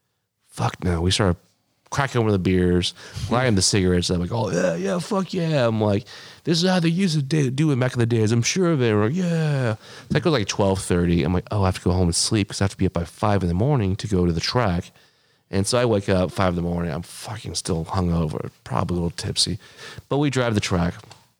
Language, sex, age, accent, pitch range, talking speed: English, male, 30-49, American, 90-115 Hz, 260 wpm